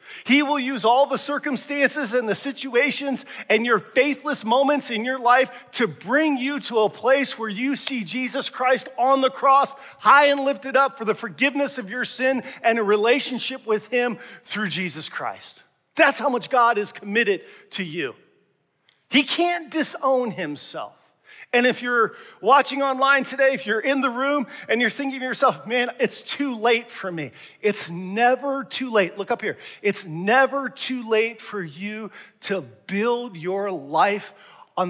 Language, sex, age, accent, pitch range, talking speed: English, male, 40-59, American, 210-270 Hz, 170 wpm